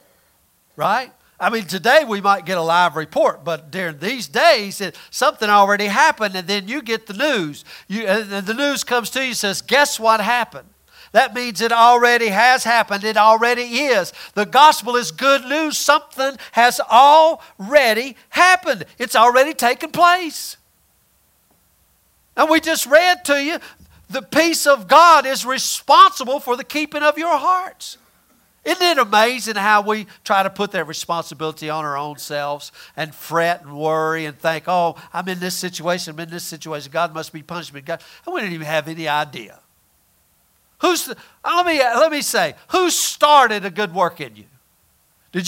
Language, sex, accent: English, male, American